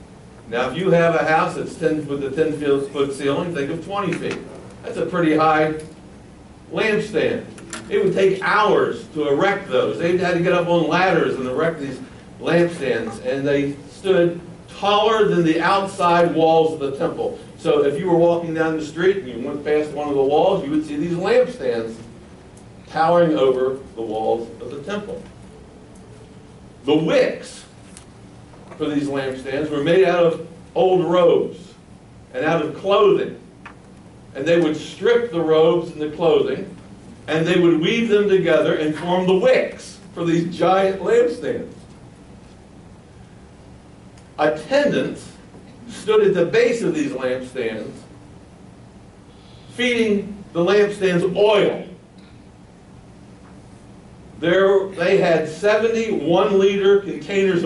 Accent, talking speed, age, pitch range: American, 135 wpm, 60-79, 155-195 Hz